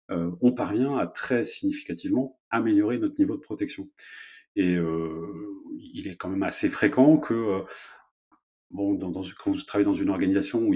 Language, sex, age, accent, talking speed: French, male, 40-59, French, 175 wpm